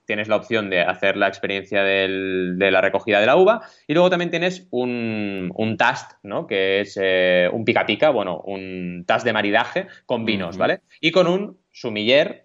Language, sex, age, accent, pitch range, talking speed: Spanish, male, 20-39, Spanish, 100-135 Hz, 190 wpm